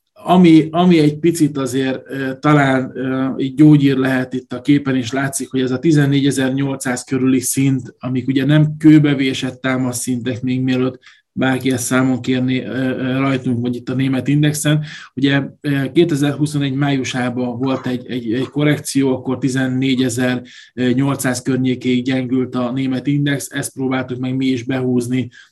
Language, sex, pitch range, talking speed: Hungarian, male, 130-145 Hz, 135 wpm